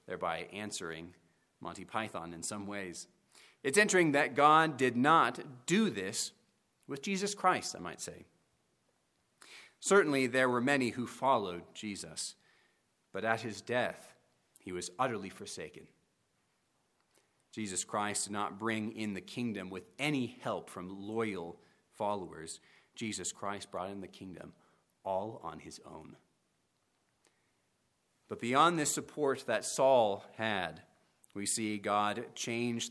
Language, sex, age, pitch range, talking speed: English, male, 30-49, 100-125 Hz, 130 wpm